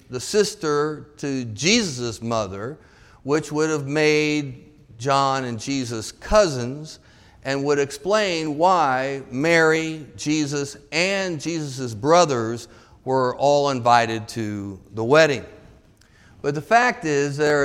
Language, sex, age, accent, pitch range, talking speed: English, male, 50-69, American, 125-170 Hz, 110 wpm